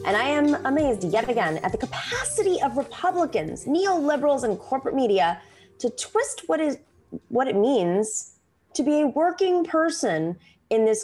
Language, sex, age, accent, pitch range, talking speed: English, female, 20-39, American, 205-330 Hz, 160 wpm